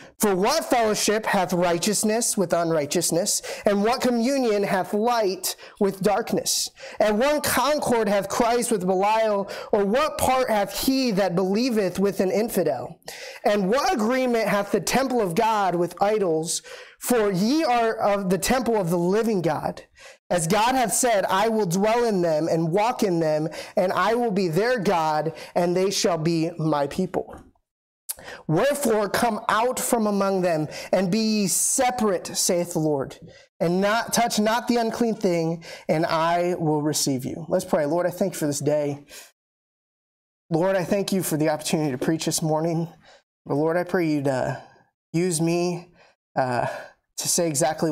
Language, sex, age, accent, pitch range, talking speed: English, male, 30-49, American, 160-220 Hz, 165 wpm